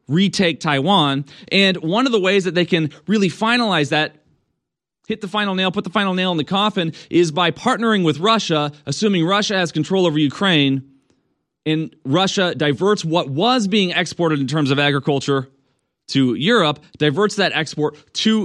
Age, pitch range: 30-49, 135-180 Hz